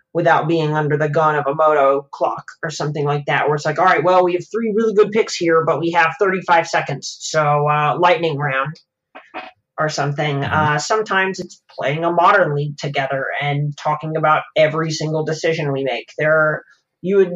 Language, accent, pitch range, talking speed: English, American, 145-175 Hz, 195 wpm